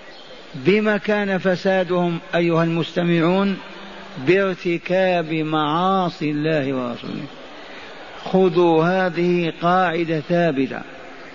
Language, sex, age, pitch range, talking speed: Arabic, male, 50-69, 160-185 Hz, 70 wpm